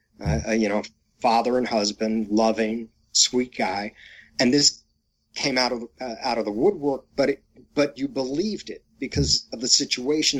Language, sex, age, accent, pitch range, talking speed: English, male, 40-59, American, 115-145 Hz, 160 wpm